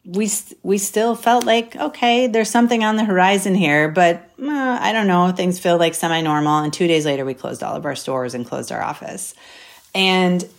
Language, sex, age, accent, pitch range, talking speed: English, female, 30-49, American, 135-175 Hz, 210 wpm